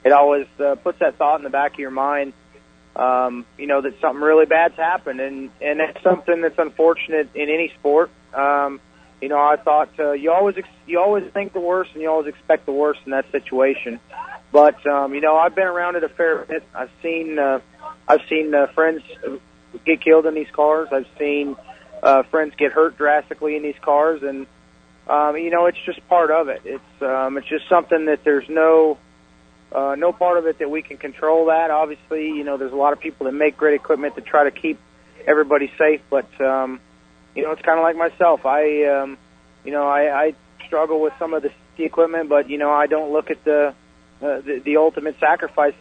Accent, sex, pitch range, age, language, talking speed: American, male, 140-160 Hz, 30-49, English, 215 wpm